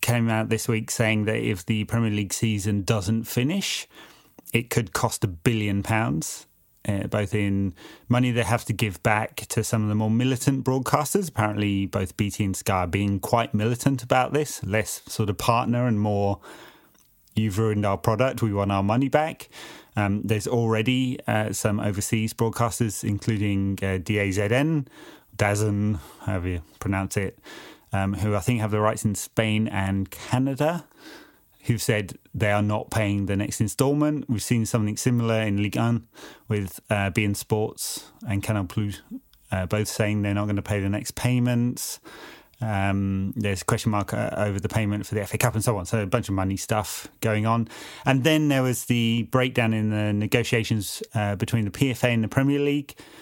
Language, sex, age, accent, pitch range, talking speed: English, male, 30-49, British, 105-120 Hz, 180 wpm